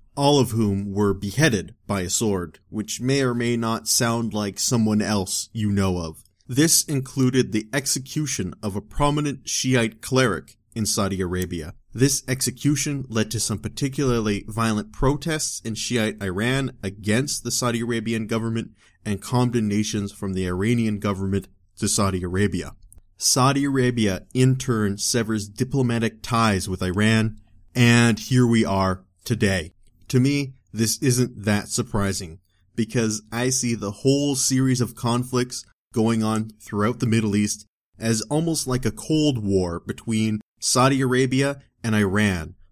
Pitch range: 100-125 Hz